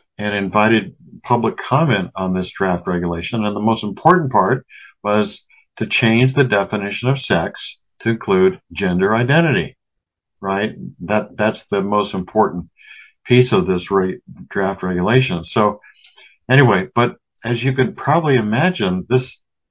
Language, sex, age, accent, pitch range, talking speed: English, male, 60-79, American, 95-130 Hz, 135 wpm